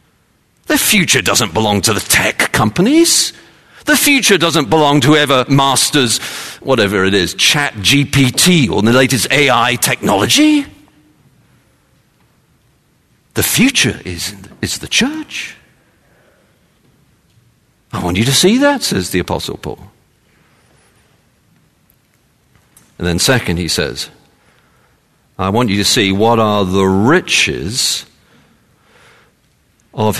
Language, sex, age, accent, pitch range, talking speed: English, male, 50-69, British, 105-160 Hz, 110 wpm